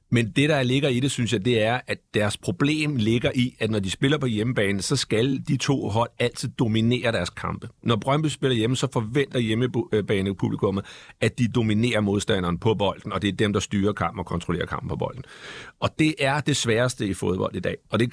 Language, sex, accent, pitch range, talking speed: Danish, male, native, 105-130 Hz, 220 wpm